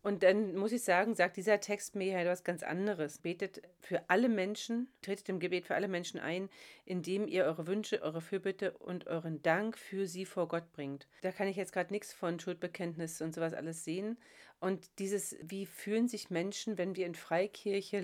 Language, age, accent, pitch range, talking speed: German, 40-59, German, 175-210 Hz, 205 wpm